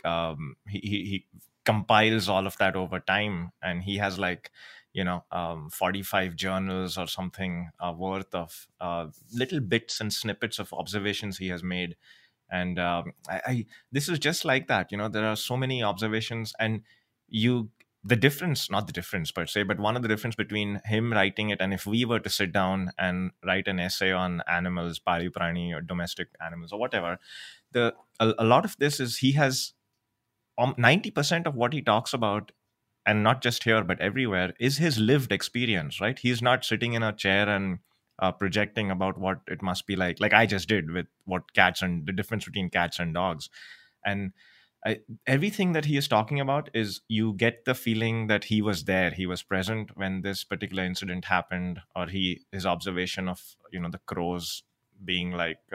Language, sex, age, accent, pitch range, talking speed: Marathi, male, 20-39, native, 90-115 Hz, 195 wpm